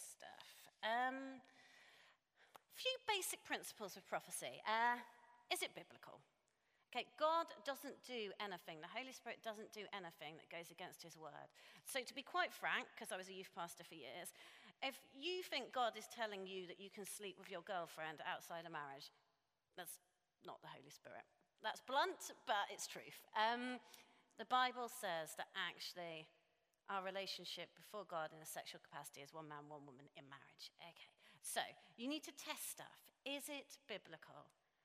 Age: 40-59